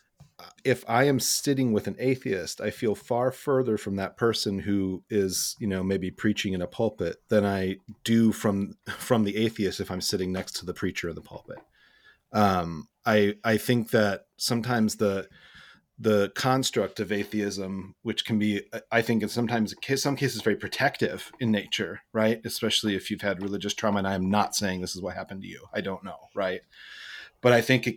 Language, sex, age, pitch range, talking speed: English, male, 30-49, 105-120 Hz, 195 wpm